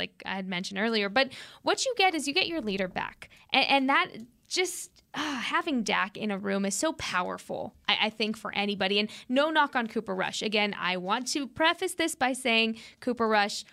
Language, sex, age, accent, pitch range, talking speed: English, female, 20-39, American, 205-260 Hz, 215 wpm